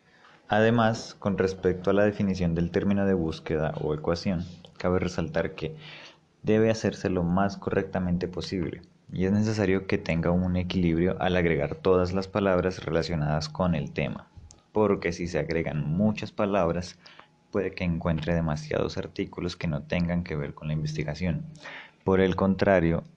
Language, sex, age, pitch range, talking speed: Spanish, male, 20-39, 85-100 Hz, 155 wpm